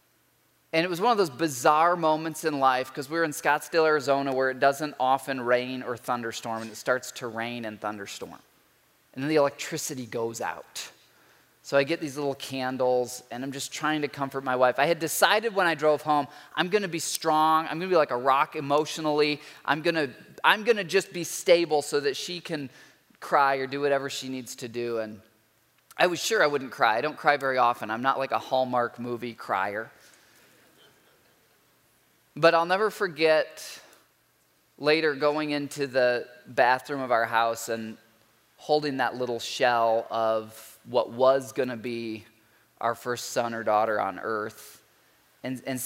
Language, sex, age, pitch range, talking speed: English, male, 20-39, 120-150 Hz, 180 wpm